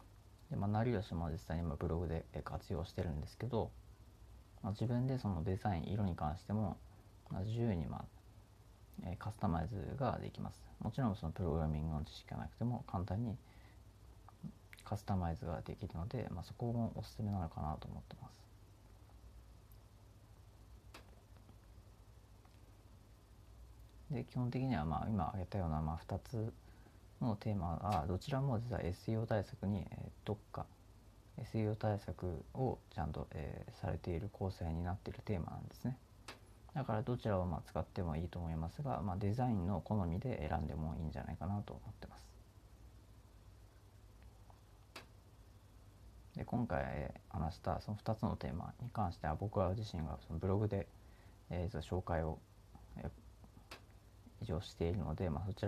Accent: native